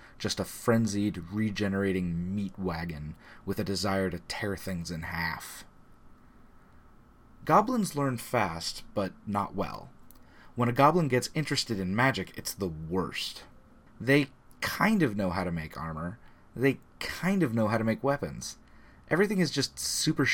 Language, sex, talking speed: English, male, 150 wpm